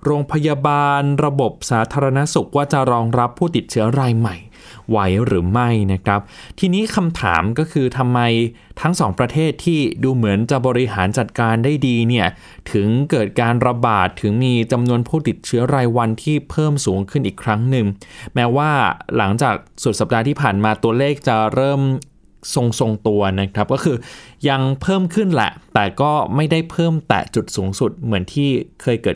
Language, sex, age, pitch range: Thai, male, 20-39, 110-145 Hz